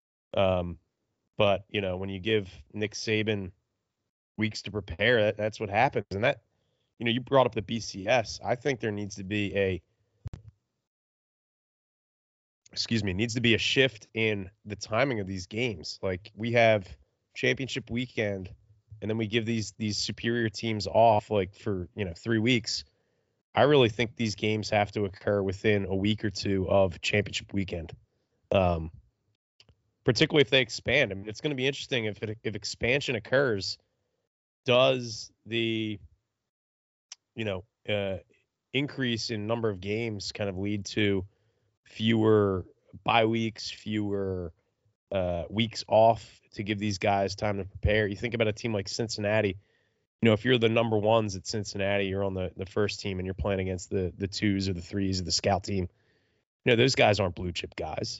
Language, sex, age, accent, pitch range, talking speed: English, male, 20-39, American, 95-115 Hz, 175 wpm